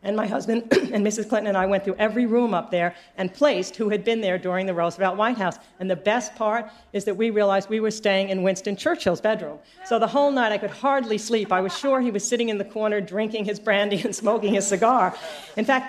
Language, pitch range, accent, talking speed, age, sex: English, 195-230 Hz, American, 250 wpm, 50-69, female